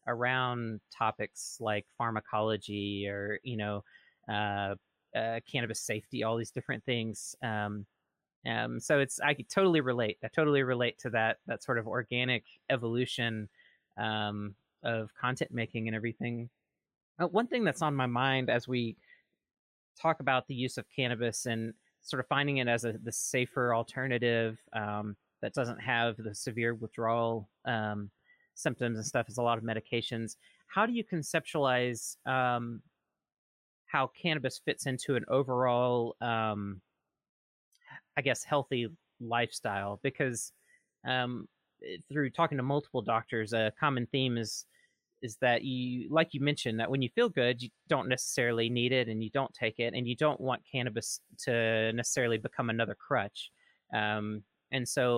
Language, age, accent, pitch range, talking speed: English, 20-39, American, 110-130 Hz, 155 wpm